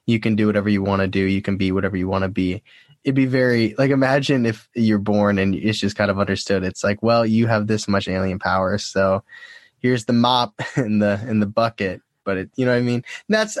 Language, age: English, 10-29